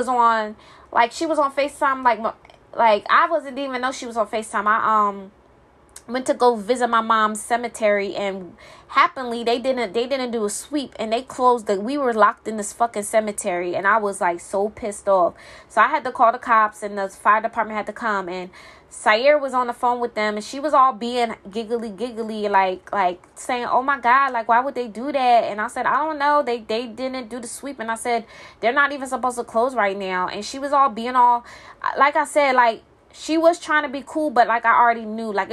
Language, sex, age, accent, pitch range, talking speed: English, female, 20-39, American, 215-255 Hz, 235 wpm